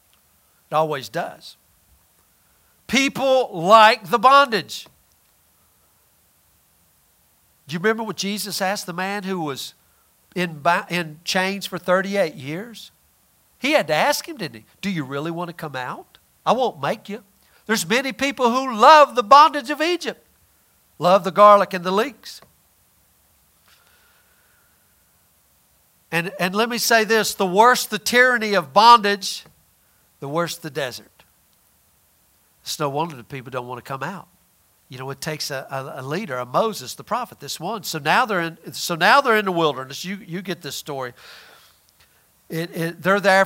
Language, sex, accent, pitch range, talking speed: English, male, American, 140-220 Hz, 155 wpm